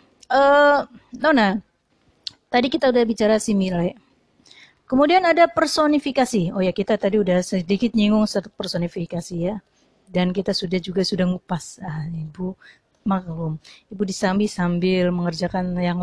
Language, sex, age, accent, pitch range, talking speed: Indonesian, female, 30-49, native, 190-270 Hz, 130 wpm